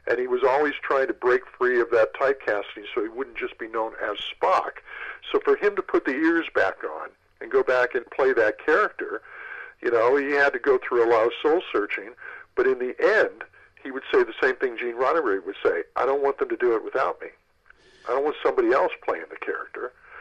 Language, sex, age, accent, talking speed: English, male, 50-69, American, 230 wpm